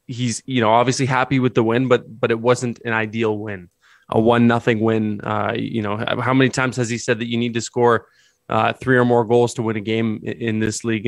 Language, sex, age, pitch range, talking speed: English, male, 20-39, 110-125 Hz, 245 wpm